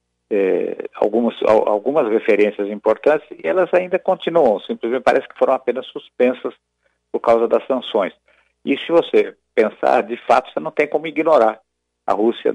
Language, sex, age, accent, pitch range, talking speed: Portuguese, male, 50-69, Brazilian, 100-135 Hz, 150 wpm